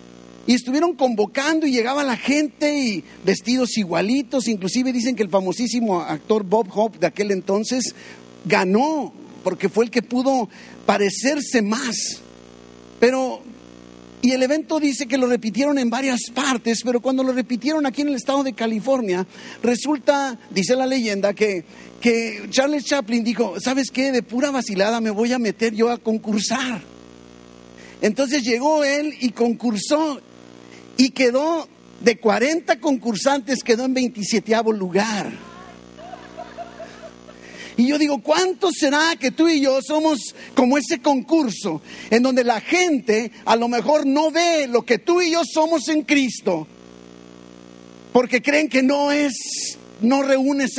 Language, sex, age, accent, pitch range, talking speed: Spanish, male, 50-69, Mexican, 200-280 Hz, 145 wpm